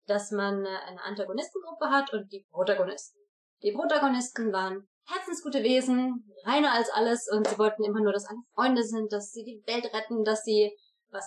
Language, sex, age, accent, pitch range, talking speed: German, female, 20-39, German, 200-270 Hz, 175 wpm